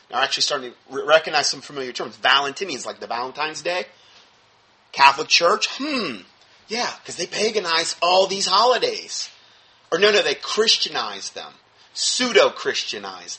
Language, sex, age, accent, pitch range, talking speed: English, male, 30-49, American, 145-220 Hz, 140 wpm